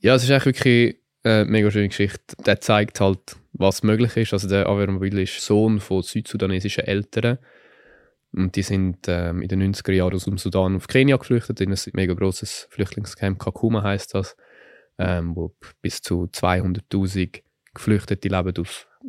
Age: 20-39